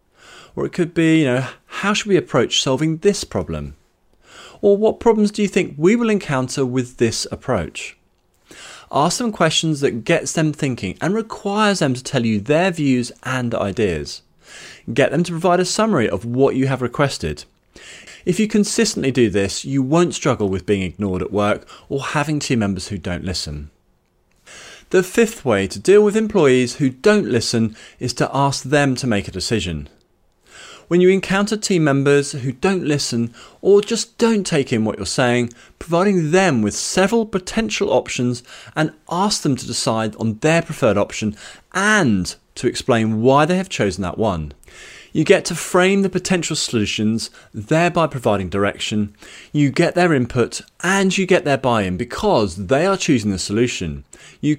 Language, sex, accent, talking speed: English, male, British, 175 wpm